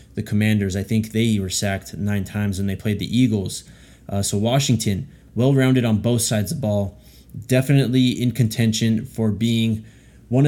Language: English